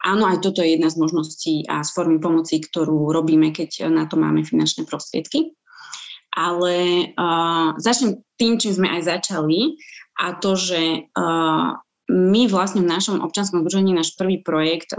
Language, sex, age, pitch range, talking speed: Slovak, female, 20-39, 155-180 Hz, 160 wpm